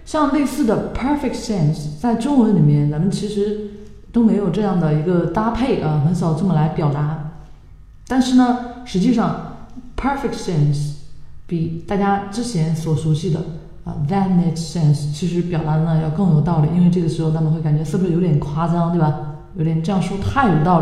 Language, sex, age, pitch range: Chinese, female, 20-39, 155-195 Hz